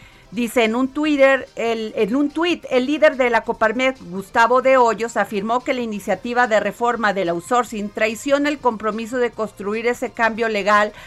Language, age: Spanish, 40-59